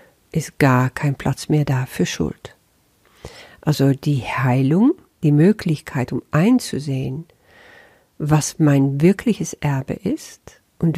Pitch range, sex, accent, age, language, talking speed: 135-180 Hz, female, German, 50-69, German, 115 wpm